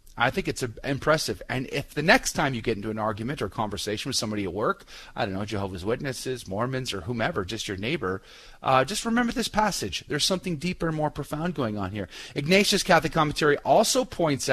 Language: English